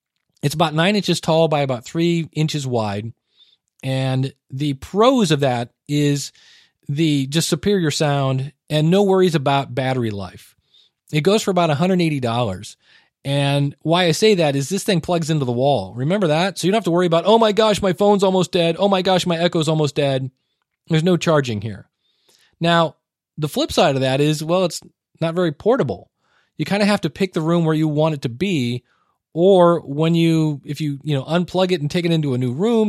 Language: English